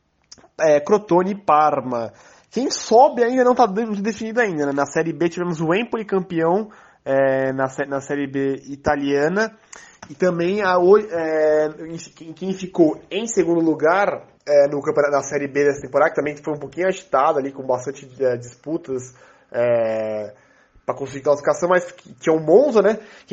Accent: Brazilian